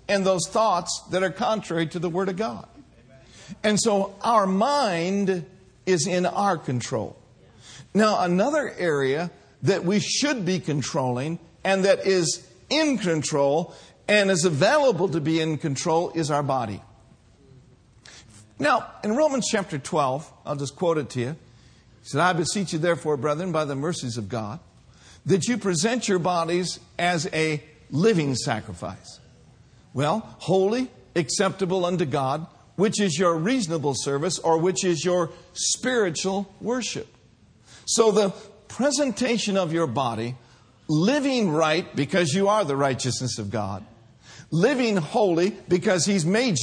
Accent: American